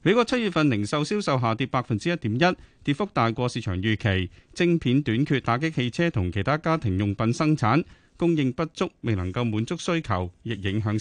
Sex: male